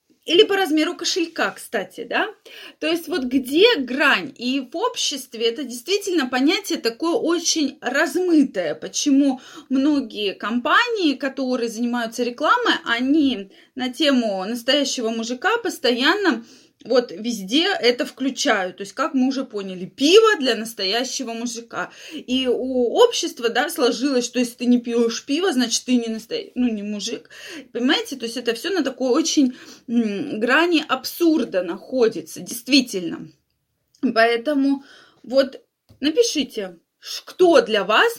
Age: 20-39